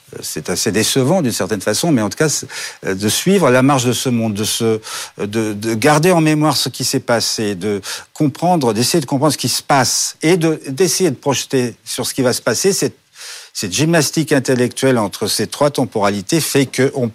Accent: French